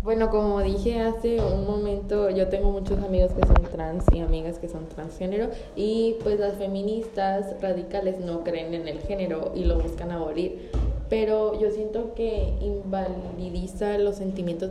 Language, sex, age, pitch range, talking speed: Spanish, female, 20-39, 175-205 Hz, 160 wpm